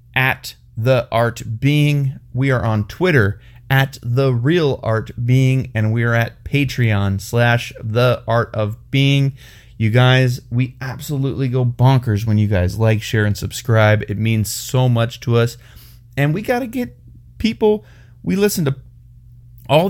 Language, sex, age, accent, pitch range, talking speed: English, male, 30-49, American, 110-130 Hz, 155 wpm